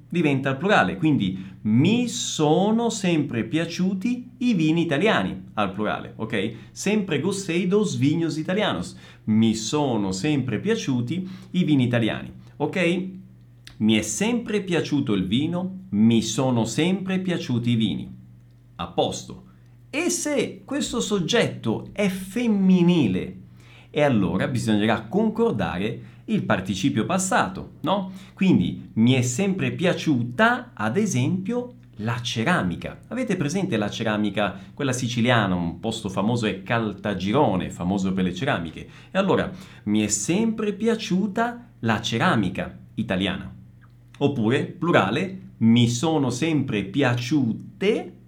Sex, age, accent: male, 40-59, native